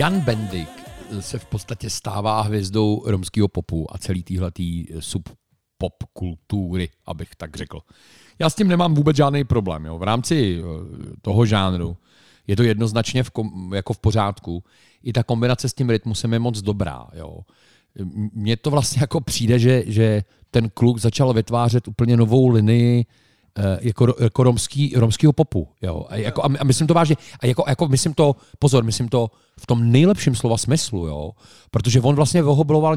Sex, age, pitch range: male, 40-59, 105-140 Hz